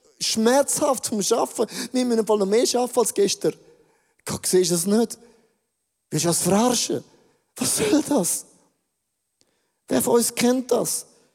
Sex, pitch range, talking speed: male, 170-235 Hz, 150 wpm